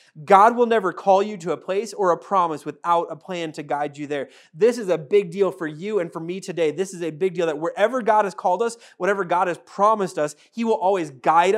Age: 30-49